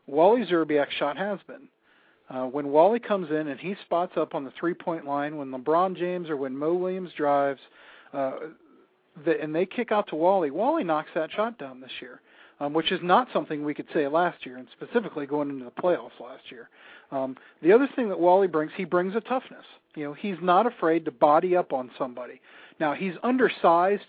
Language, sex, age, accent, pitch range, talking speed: English, male, 40-59, American, 150-190 Hz, 205 wpm